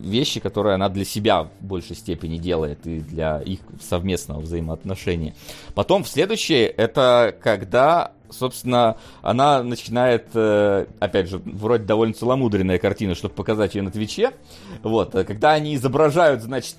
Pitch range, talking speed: 100-135 Hz, 135 wpm